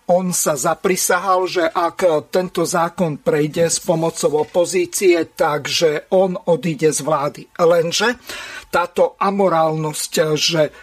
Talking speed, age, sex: 110 wpm, 50-69, male